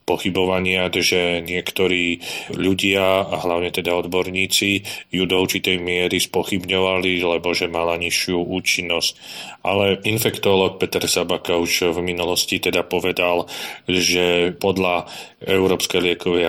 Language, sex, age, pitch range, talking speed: Slovak, male, 30-49, 90-100 Hz, 115 wpm